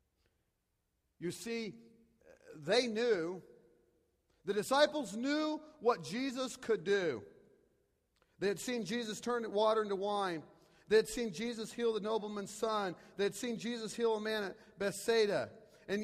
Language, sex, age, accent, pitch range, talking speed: English, male, 40-59, American, 145-235 Hz, 140 wpm